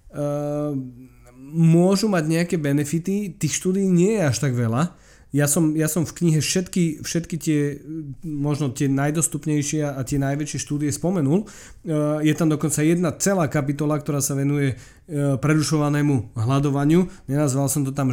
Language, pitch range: Slovak, 135-155 Hz